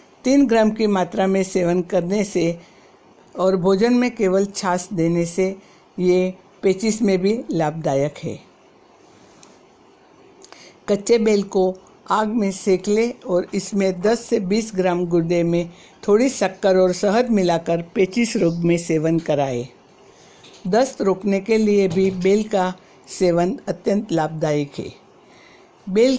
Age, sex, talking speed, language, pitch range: 60-79, female, 135 wpm, Hindi, 175-215 Hz